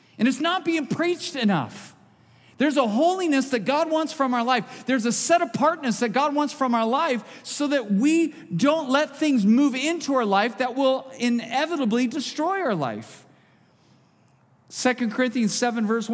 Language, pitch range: English, 190-265 Hz